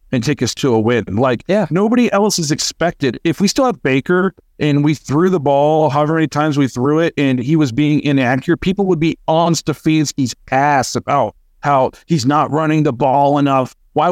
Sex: male